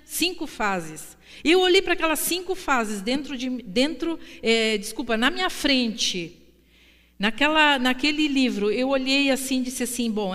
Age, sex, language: 50-69, female, Portuguese